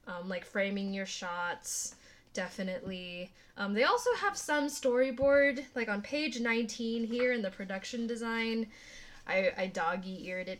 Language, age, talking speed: English, 10-29, 140 wpm